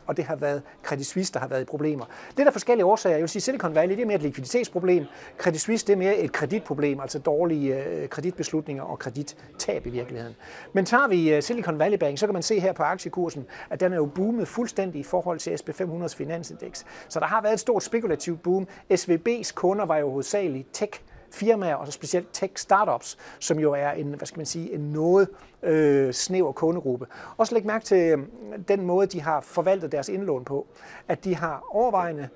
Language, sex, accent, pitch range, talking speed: Danish, male, native, 150-200 Hz, 215 wpm